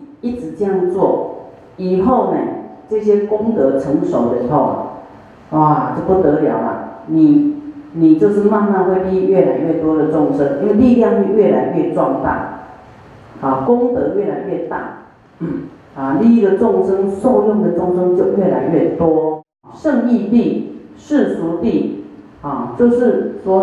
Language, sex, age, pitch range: Chinese, female, 40-59, 170-240 Hz